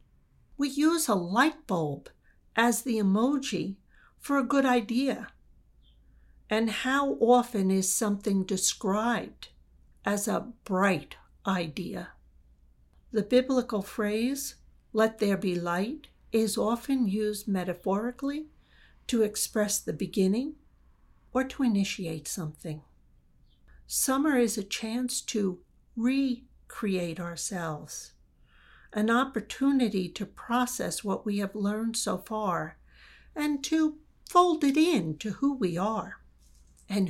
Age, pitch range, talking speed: 50-69, 165-240 Hz, 110 wpm